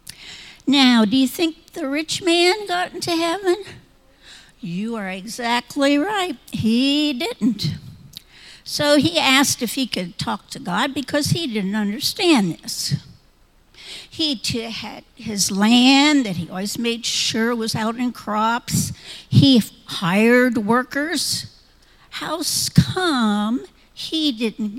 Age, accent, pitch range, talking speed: 60-79, American, 205-280 Hz, 120 wpm